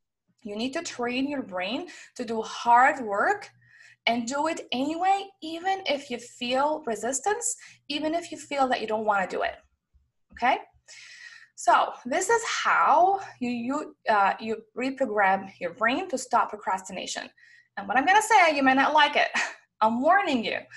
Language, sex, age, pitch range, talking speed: English, female, 20-39, 215-325 Hz, 170 wpm